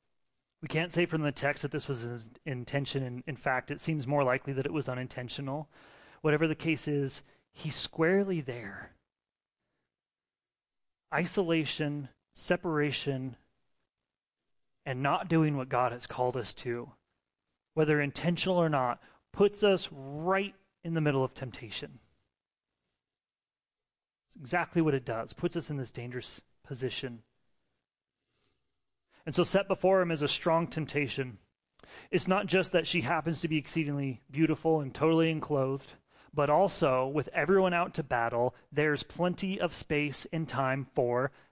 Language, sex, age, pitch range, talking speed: English, male, 30-49, 130-170 Hz, 145 wpm